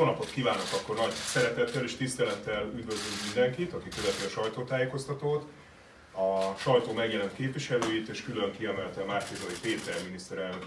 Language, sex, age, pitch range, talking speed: Hungarian, male, 30-49, 105-140 Hz, 140 wpm